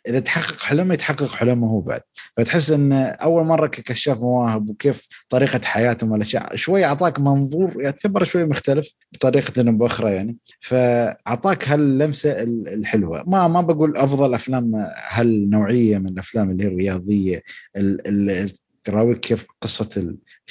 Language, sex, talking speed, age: Arabic, male, 135 wpm, 20-39